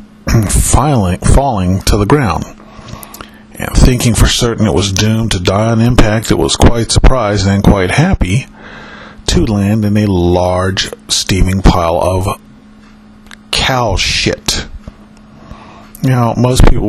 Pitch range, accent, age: 100-120 Hz, American, 40-59